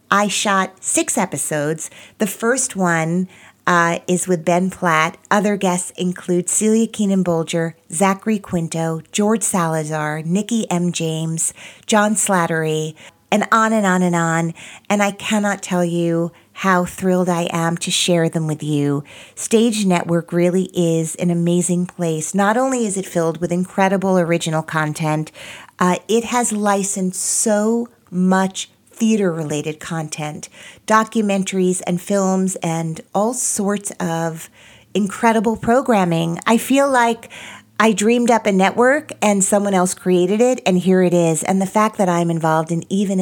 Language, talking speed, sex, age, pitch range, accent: English, 145 wpm, female, 40-59, 165-205 Hz, American